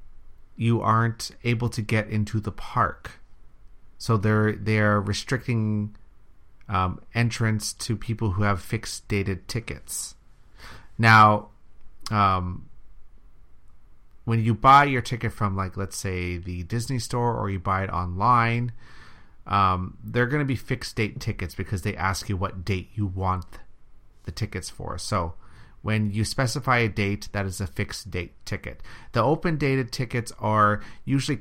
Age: 30-49